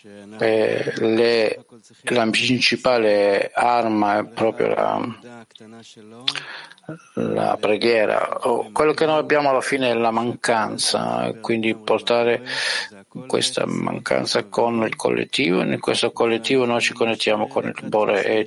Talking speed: 115 wpm